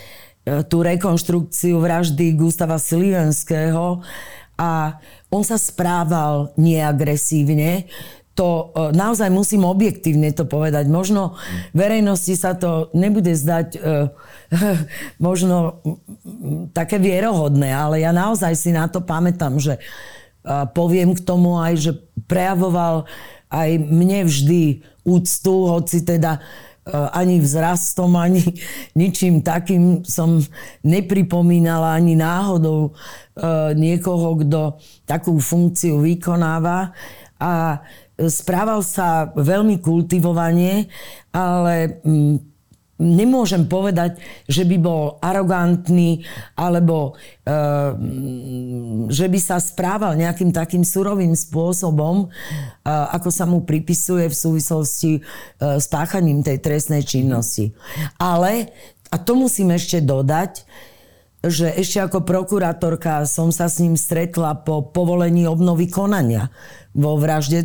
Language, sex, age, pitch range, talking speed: Slovak, female, 40-59, 155-180 Hz, 100 wpm